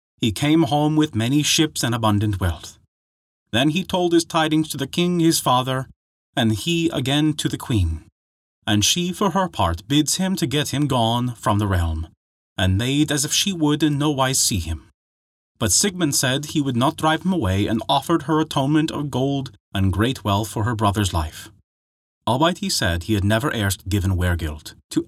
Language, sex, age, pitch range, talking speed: English, male, 30-49, 95-150 Hz, 195 wpm